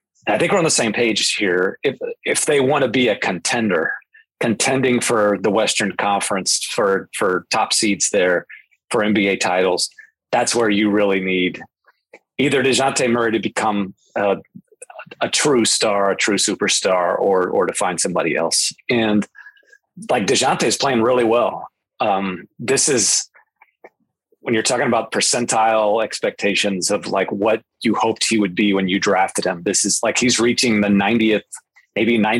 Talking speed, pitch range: 165 wpm, 100-125 Hz